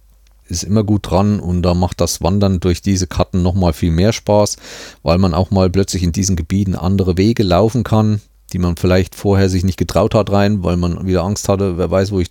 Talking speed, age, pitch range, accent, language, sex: 230 wpm, 40-59, 85-105 Hz, German, German, male